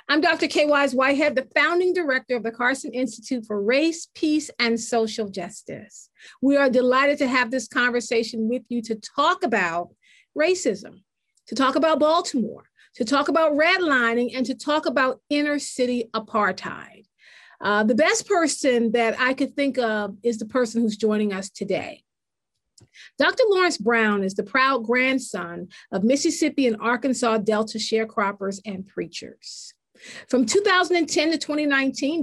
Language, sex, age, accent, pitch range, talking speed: English, female, 40-59, American, 230-300 Hz, 150 wpm